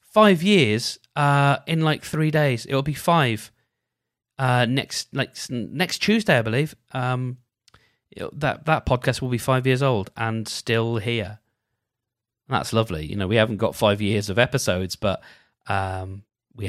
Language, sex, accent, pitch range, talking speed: English, male, British, 105-130 Hz, 160 wpm